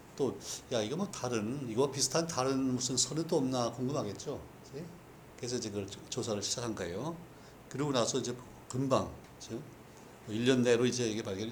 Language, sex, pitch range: Korean, male, 110-145 Hz